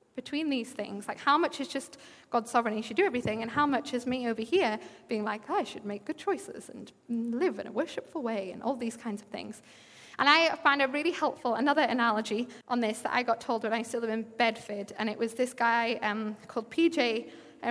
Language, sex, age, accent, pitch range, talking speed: English, female, 20-39, British, 225-275 Hz, 230 wpm